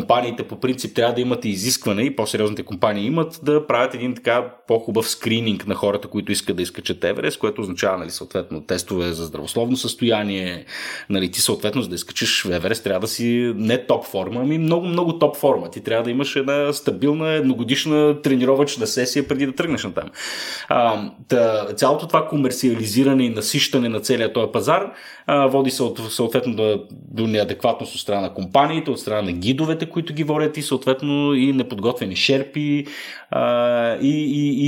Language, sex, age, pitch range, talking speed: Bulgarian, male, 30-49, 110-140 Hz, 175 wpm